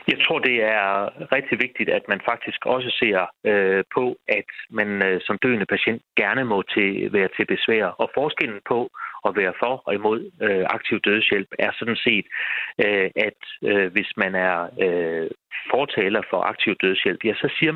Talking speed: 180 wpm